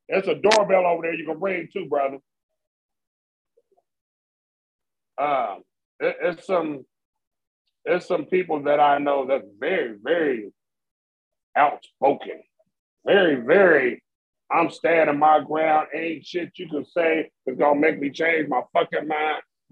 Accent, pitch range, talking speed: American, 155-190 Hz, 135 wpm